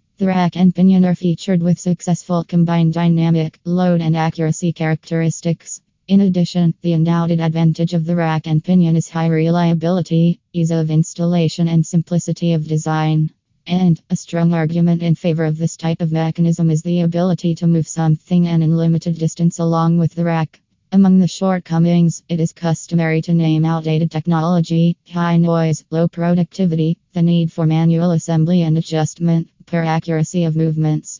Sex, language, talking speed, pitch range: female, English, 160 wpm, 165-175 Hz